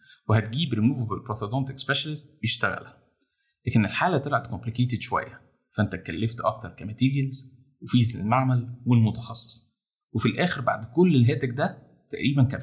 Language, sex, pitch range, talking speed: Arabic, male, 110-135 Hz, 120 wpm